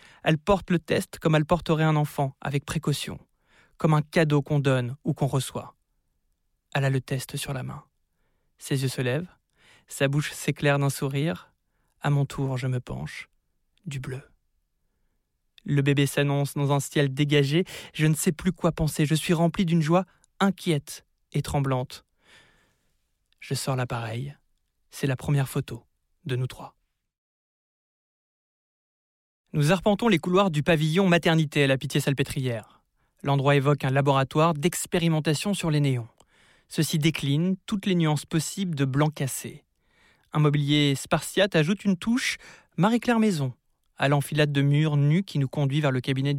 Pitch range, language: 140-165 Hz, French